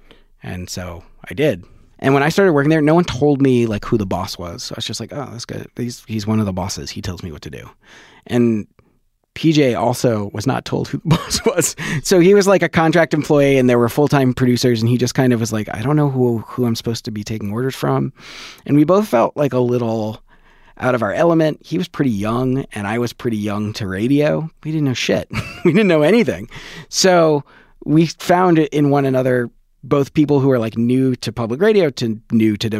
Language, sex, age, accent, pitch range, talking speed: English, male, 30-49, American, 105-145 Hz, 235 wpm